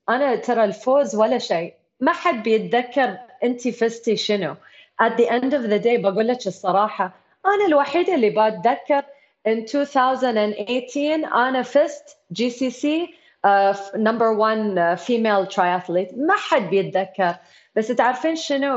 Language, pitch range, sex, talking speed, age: Arabic, 205-275 Hz, female, 130 wpm, 30-49